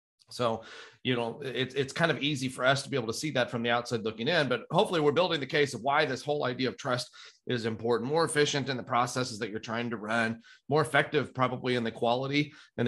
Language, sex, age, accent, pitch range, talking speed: English, male, 30-49, American, 115-140 Hz, 245 wpm